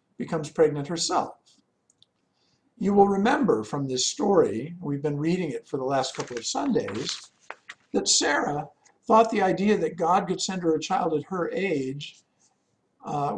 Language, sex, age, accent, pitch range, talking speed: English, male, 50-69, American, 150-210 Hz, 155 wpm